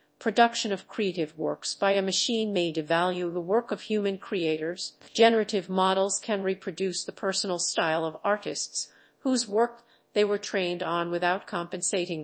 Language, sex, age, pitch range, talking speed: English, female, 40-59, 175-230 Hz, 150 wpm